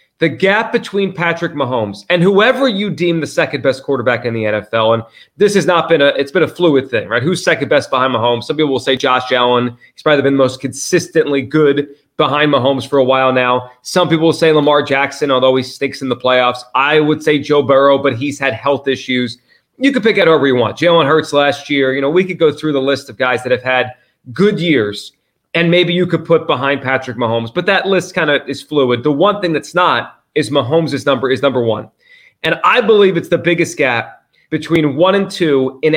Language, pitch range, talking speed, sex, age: English, 130-165 Hz, 225 wpm, male, 30-49